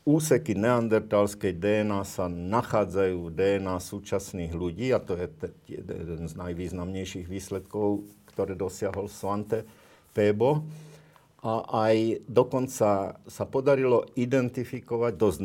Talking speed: 105 wpm